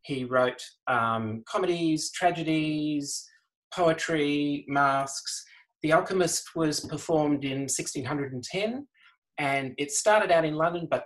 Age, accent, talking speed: 30-49, Australian, 110 wpm